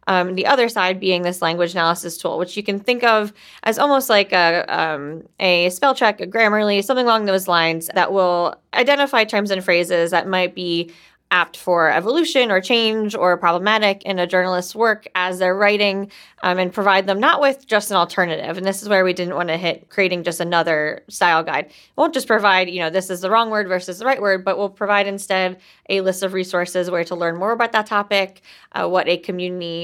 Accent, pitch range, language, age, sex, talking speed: American, 175-205 Hz, English, 20-39, female, 215 wpm